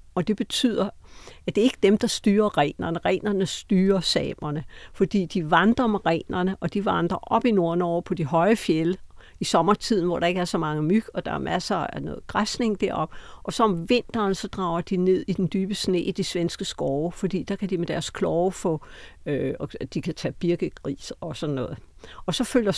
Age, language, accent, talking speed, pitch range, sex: 60-79, Danish, native, 215 wpm, 155-200 Hz, female